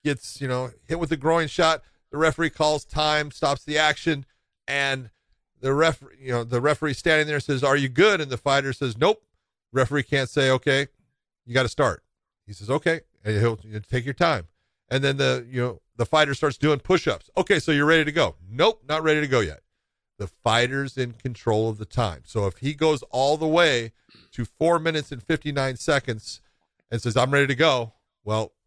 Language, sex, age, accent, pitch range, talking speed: English, male, 40-59, American, 115-145 Hz, 205 wpm